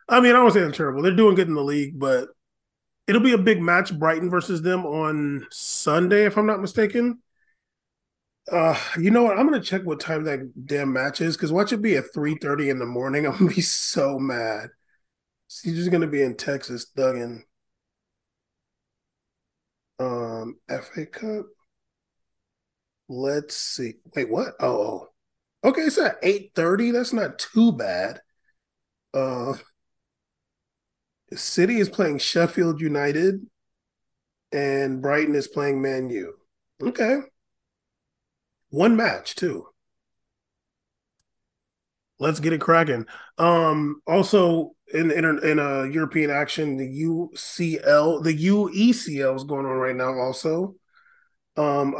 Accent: American